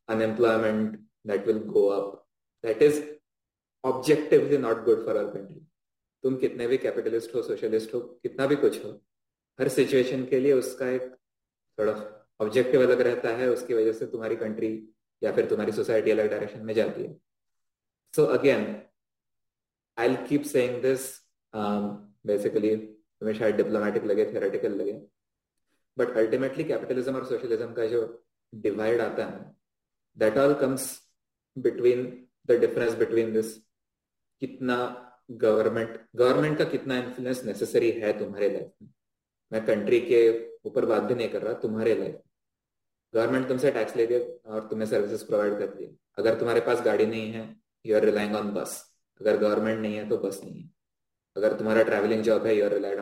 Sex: male